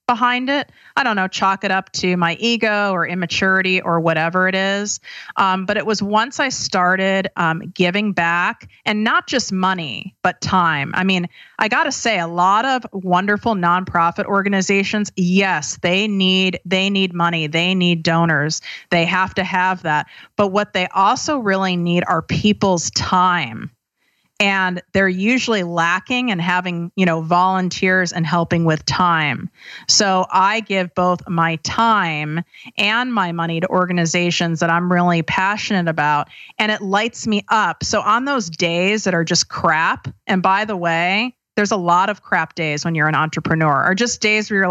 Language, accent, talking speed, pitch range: English, American, 170 wpm, 170-215 Hz